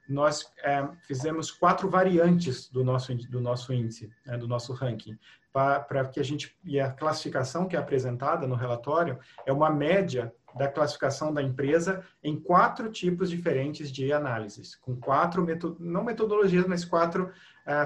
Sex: male